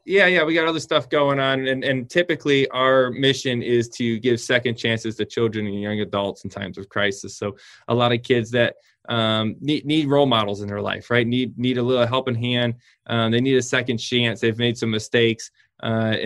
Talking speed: 220 wpm